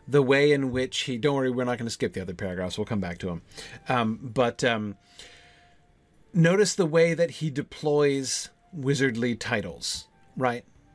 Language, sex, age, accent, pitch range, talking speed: English, male, 40-59, American, 120-165 Hz, 170 wpm